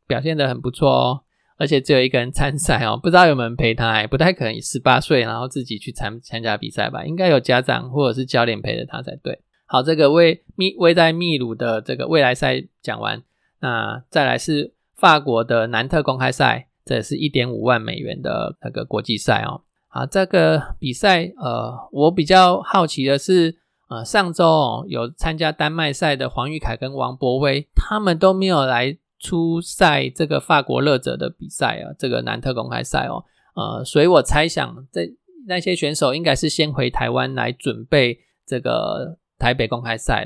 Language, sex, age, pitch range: Chinese, male, 20-39, 120-160 Hz